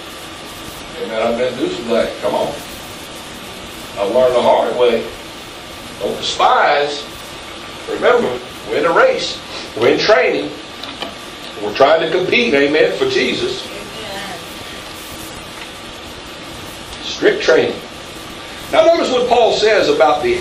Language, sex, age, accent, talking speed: English, male, 60-79, American, 115 wpm